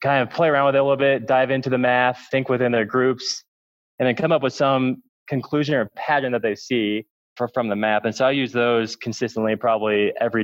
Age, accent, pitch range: 20-39, American, 110-130 Hz